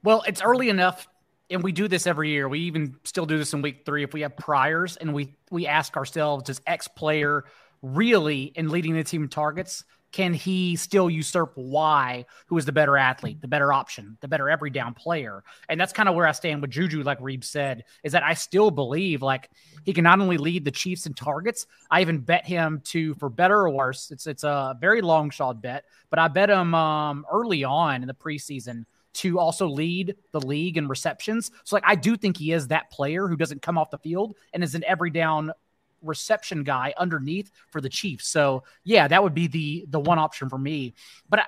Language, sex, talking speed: English, male, 215 wpm